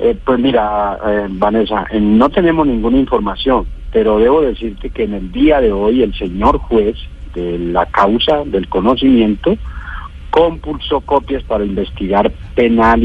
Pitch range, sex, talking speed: 95-120 Hz, male, 145 wpm